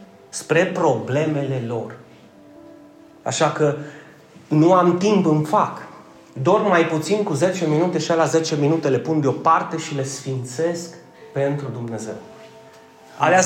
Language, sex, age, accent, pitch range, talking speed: Romanian, male, 30-49, native, 135-180 Hz, 130 wpm